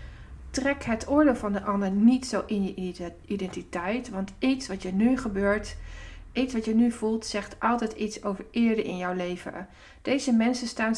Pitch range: 170-230 Hz